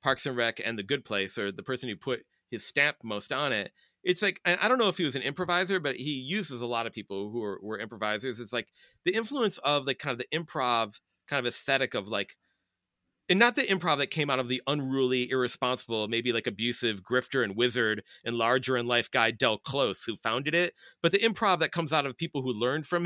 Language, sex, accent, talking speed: English, male, American, 235 wpm